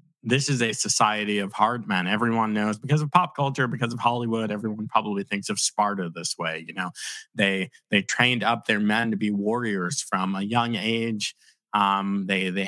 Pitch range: 105-130 Hz